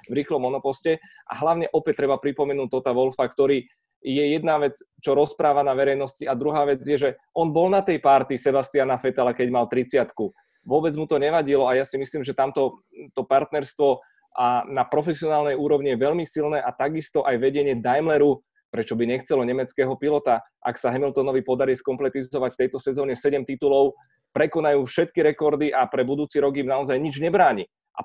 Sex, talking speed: male, 180 wpm